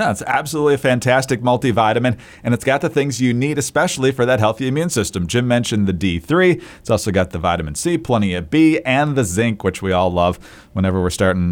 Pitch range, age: 105-150 Hz, 40-59